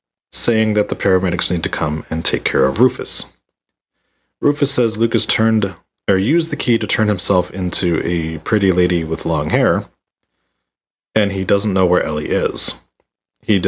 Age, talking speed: 40-59, 165 wpm